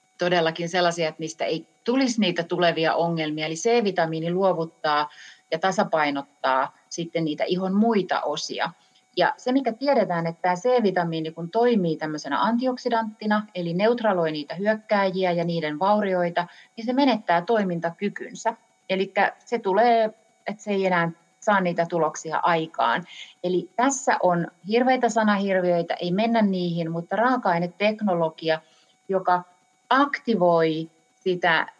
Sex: female